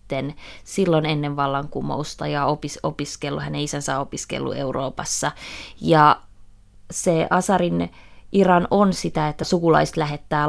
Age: 20-39